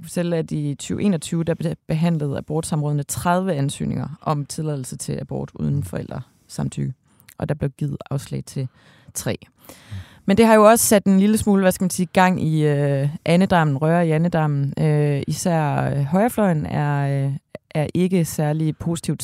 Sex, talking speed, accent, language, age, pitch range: female, 155 wpm, native, Danish, 30-49, 145-185 Hz